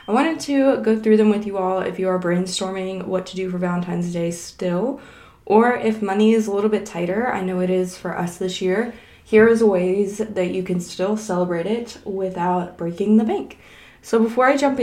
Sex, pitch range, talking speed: female, 185-220 Hz, 215 wpm